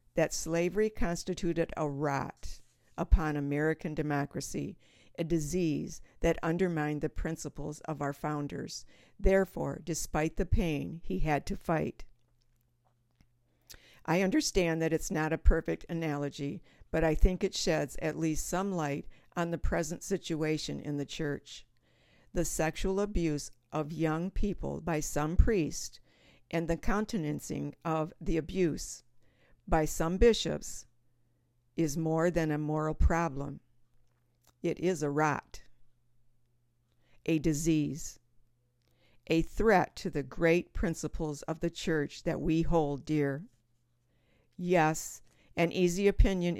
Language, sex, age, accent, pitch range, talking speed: English, female, 60-79, American, 140-175 Hz, 125 wpm